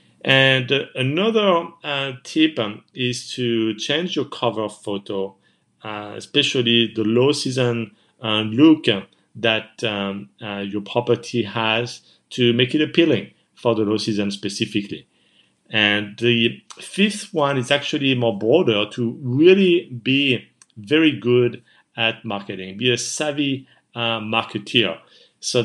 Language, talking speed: English, 125 wpm